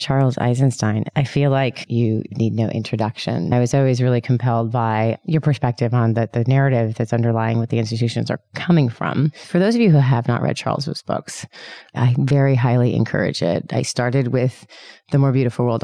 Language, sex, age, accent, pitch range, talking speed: English, female, 30-49, American, 120-140 Hz, 195 wpm